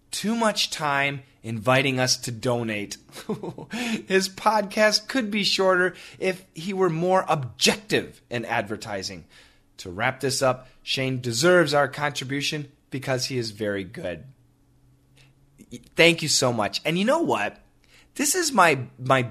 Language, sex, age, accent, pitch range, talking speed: English, male, 30-49, American, 130-215 Hz, 135 wpm